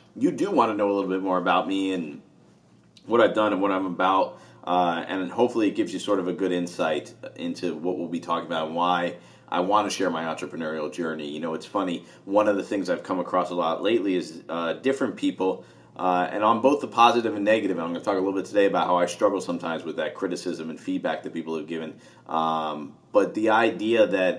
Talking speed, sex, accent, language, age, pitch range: 245 wpm, male, American, English, 40-59, 90-125 Hz